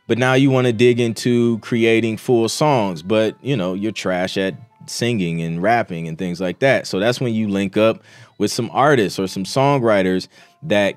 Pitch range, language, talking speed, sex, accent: 115-155 Hz, English, 195 wpm, male, American